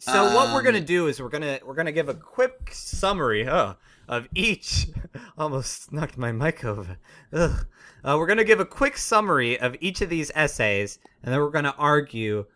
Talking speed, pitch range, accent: 190 wpm, 105-145 Hz, American